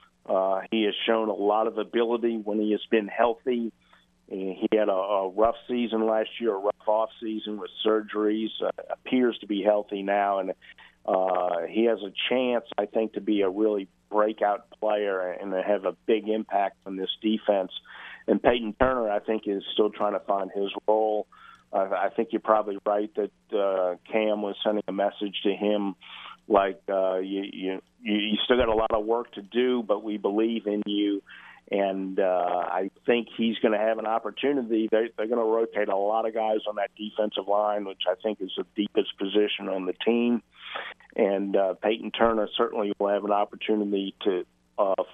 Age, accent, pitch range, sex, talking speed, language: 50-69, American, 100-110 Hz, male, 195 wpm, English